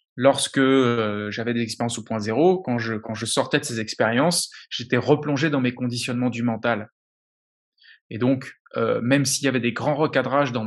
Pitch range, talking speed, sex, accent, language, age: 115-145 Hz, 190 wpm, male, French, French, 20-39